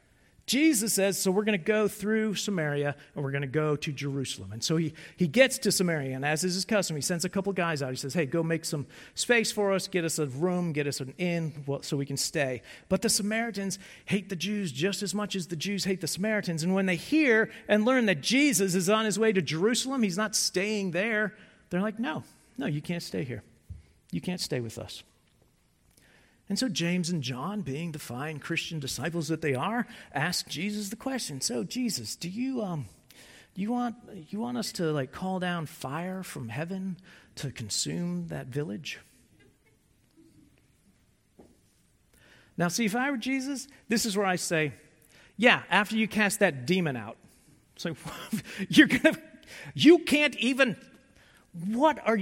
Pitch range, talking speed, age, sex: 155-215 Hz, 190 wpm, 40-59, male